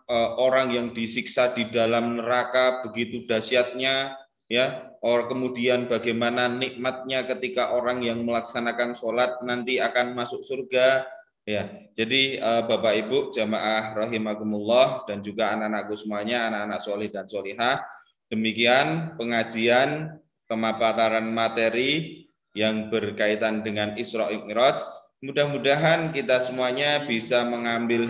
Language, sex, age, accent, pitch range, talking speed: Indonesian, male, 20-39, native, 110-130 Hz, 105 wpm